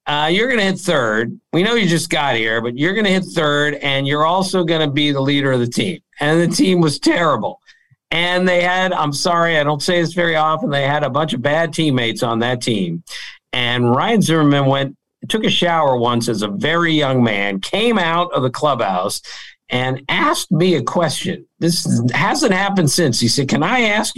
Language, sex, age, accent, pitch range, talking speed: English, male, 50-69, American, 130-180 Hz, 215 wpm